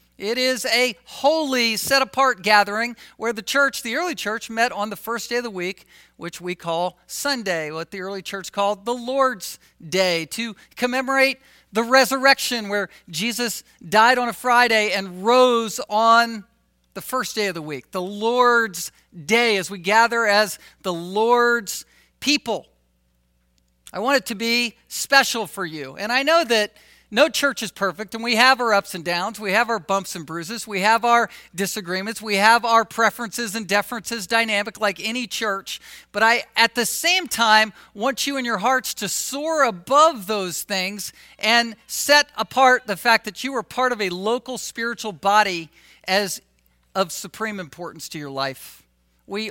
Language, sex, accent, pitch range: English, male, American, 185-240 Hz